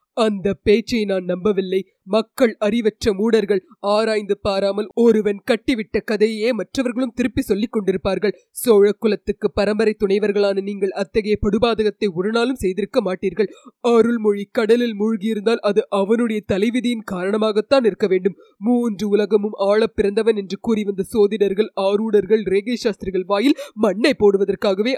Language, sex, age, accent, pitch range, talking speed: Tamil, female, 20-39, native, 200-235 Hz, 115 wpm